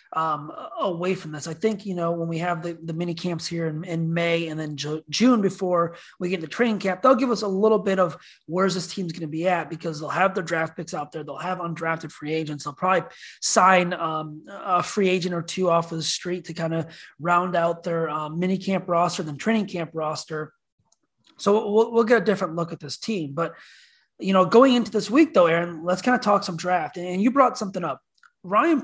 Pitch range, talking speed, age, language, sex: 165-195 Hz, 235 wpm, 30-49, English, male